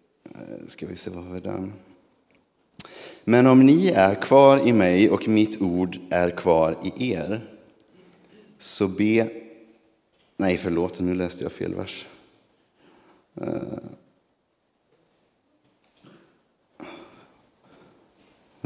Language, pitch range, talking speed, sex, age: Swedish, 85-110 Hz, 95 wpm, male, 30-49